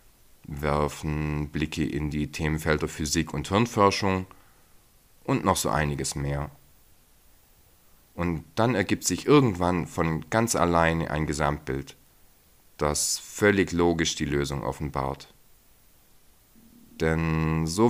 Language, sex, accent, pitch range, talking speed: German, male, German, 75-85 Hz, 105 wpm